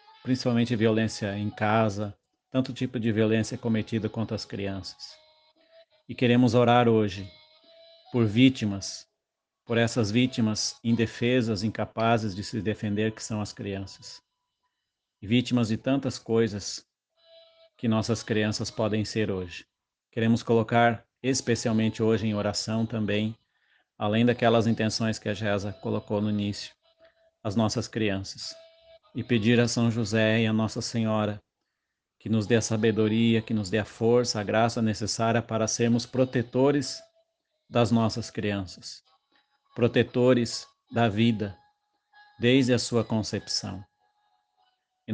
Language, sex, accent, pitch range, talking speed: Portuguese, male, Brazilian, 110-125 Hz, 130 wpm